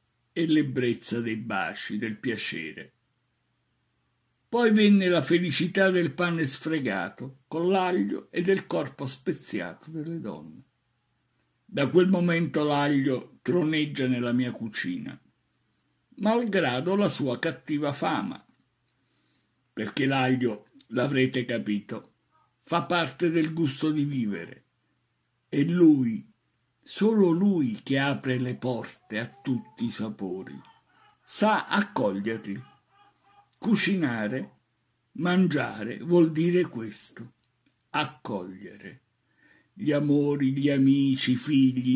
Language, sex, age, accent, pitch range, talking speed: Italian, male, 60-79, native, 125-170 Hz, 100 wpm